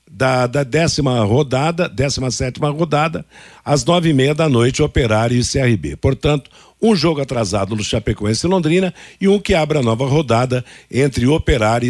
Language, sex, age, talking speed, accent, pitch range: Portuguese, male, 60-79, 165 wpm, Brazilian, 125-160 Hz